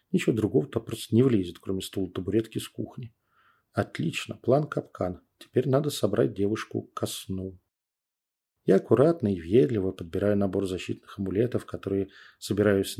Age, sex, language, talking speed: 40-59, male, Russian, 140 wpm